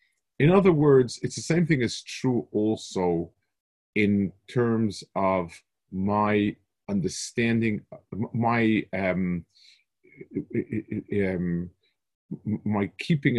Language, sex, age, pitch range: English, male, 40-59, 100-135 Hz